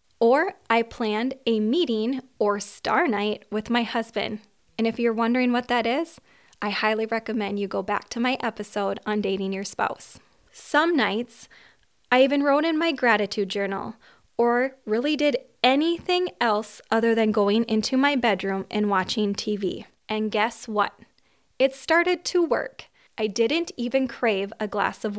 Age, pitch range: 20-39, 210-260 Hz